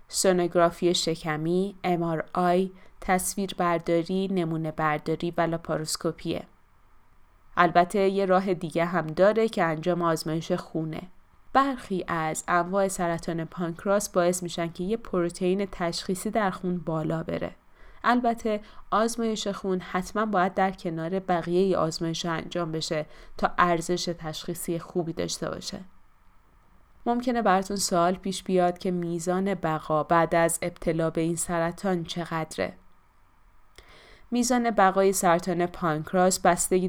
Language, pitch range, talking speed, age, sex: Persian, 160-185 Hz, 115 wpm, 20-39, female